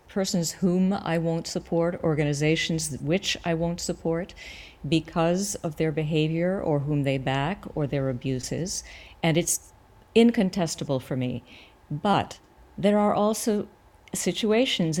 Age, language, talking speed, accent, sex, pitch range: 50-69, English, 125 wpm, American, female, 140-180 Hz